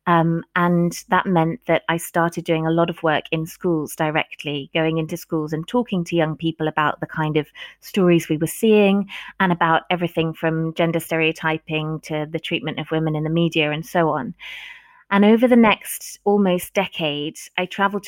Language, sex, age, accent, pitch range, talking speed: English, female, 30-49, British, 160-195 Hz, 185 wpm